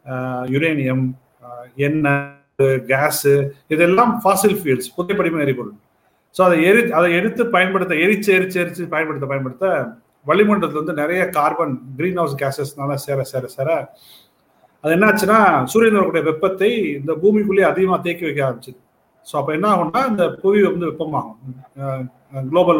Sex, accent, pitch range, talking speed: male, native, 140-185 Hz, 125 wpm